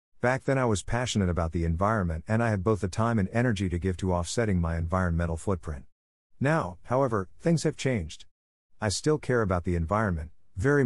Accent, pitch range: American, 85-115 Hz